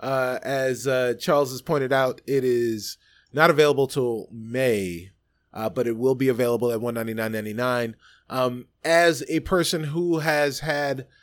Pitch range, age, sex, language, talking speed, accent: 105-150 Hz, 30-49, male, English, 150 wpm, American